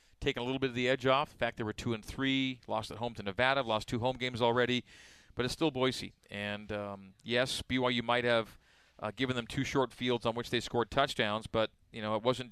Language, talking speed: English, 245 wpm